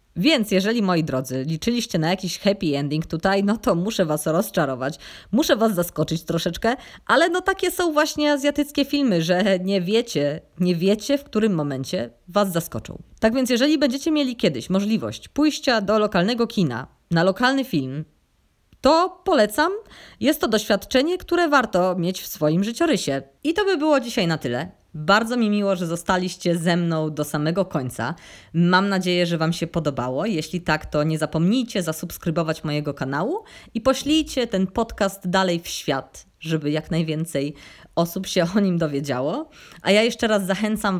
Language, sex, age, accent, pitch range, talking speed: Polish, female, 20-39, native, 155-225 Hz, 165 wpm